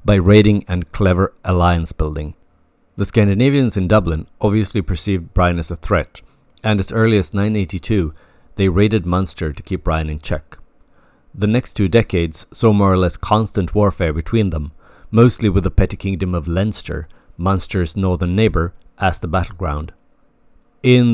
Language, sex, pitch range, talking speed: English, male, 85-105 Hz, 155 wpm